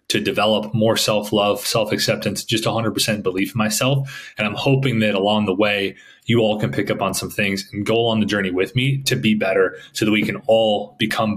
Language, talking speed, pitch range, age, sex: English, 230 wpm, 100-125 Hz, 20-39, male